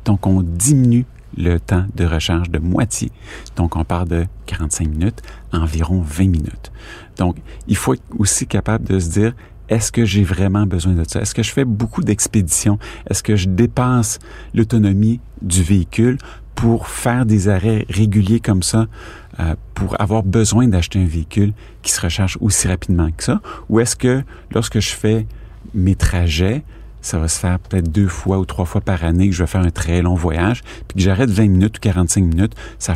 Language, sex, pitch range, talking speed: French, male, 90-110 Hz, 195 wpm